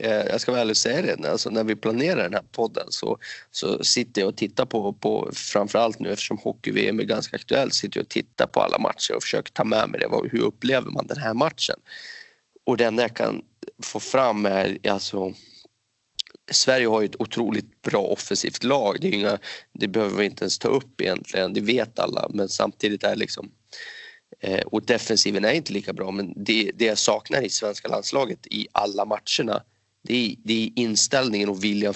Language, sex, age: Swedish, male, 30-49